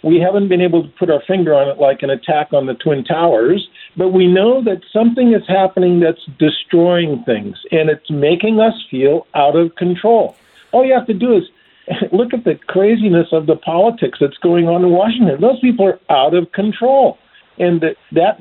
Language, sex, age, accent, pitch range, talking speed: English, male, 50-69, American, 160-225 Hz, 200 wpm